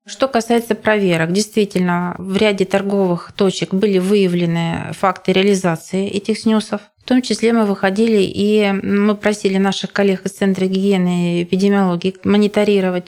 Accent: native